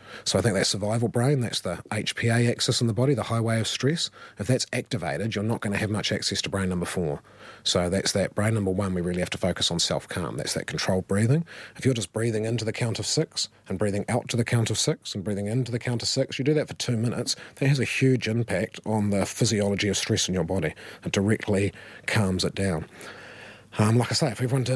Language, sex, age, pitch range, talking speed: English, male, 30-49, 105-125 Hz, 245 wpm